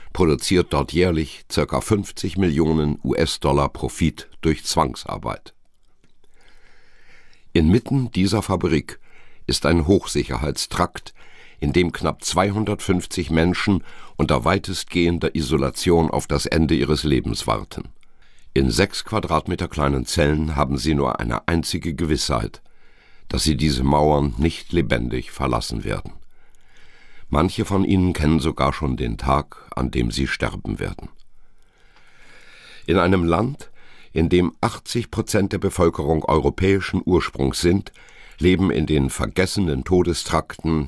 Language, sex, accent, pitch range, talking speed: German, male, German, 70-90 Hz, 115 wpm